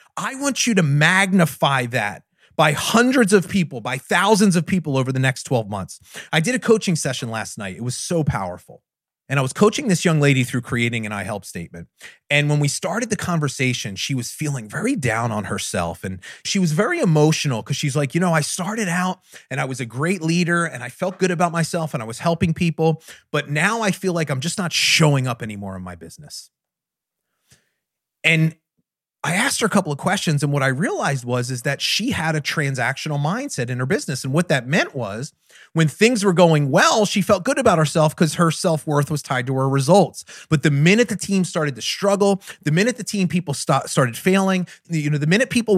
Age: 30-49